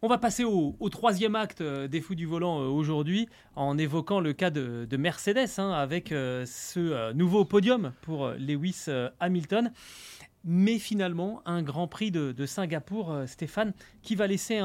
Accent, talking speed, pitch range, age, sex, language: French, 160 wpm, 140-200 Hz, 30-49, male, French